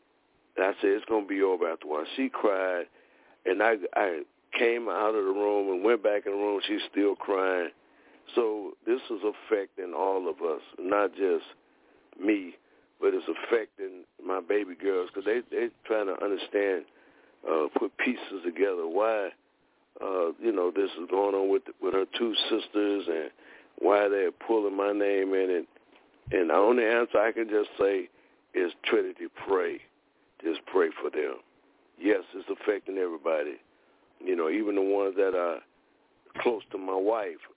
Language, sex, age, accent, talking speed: English, male, 60-79, American, 175 wpm